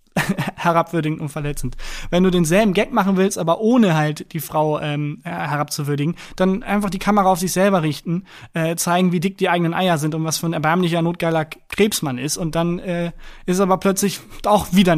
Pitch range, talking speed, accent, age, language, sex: 150-185 Hz, 195 wpm, German, 20-39, German, male